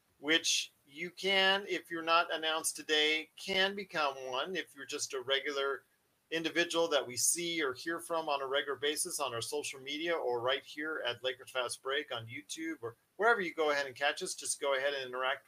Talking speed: 205 wpm